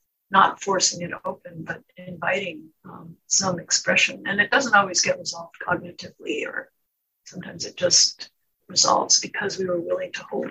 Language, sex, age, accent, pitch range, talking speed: English, female, 50-69, American, 175-195 Hz, 155 wpm